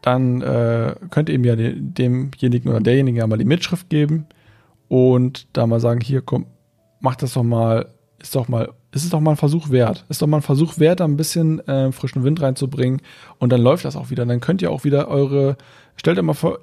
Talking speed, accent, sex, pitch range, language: 225 wpm, German, male, 115-145 Hz, German